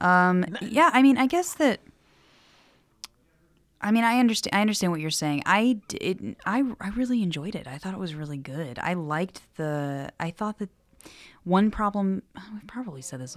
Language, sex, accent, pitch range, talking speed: English, female, American, 155-215 Hz, 185 wpm